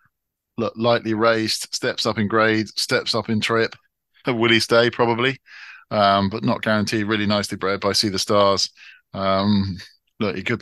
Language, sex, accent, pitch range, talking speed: English, male, British, 95-110 Hz, 170 wpm